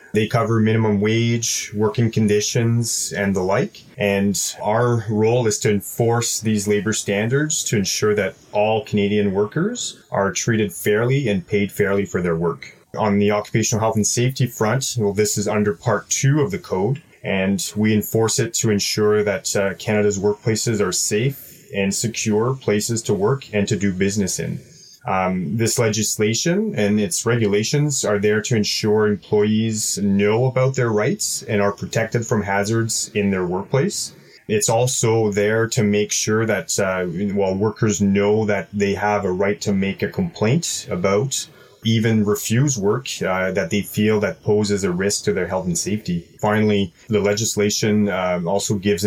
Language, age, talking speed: English, 30-49, 170 wpm